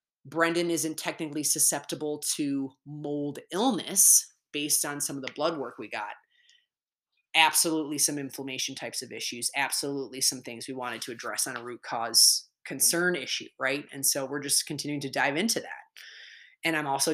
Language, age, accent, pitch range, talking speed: English, 20-39, American, 135-155 Hz, 170 wpm